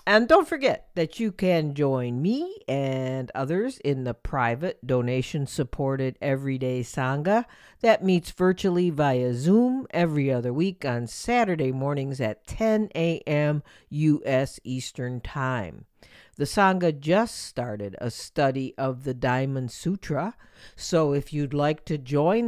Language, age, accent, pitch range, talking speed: English, 50-69, American, 130-180 Hz, 130 wpm